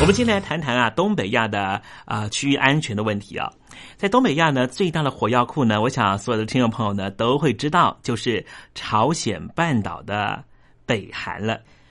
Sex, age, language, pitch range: male, 30-49, Chinese, 115-155 Hz